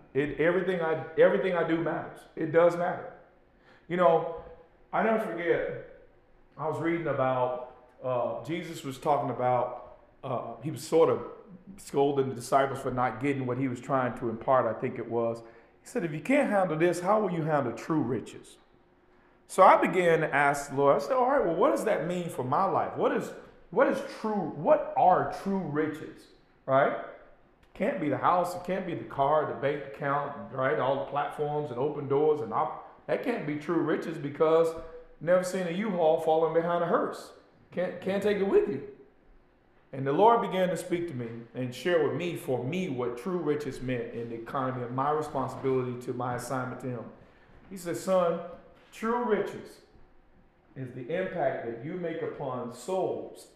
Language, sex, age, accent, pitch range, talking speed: English, male, 40-59, American, 130-180 Hz, 190 wpm